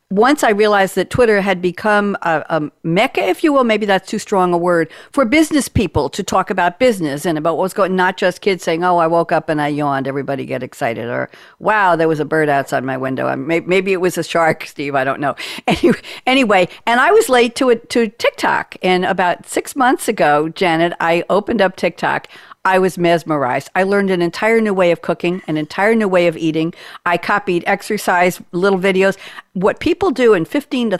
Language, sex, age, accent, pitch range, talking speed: English, female, 60-79, American, 170-225 Hz, 220 wpm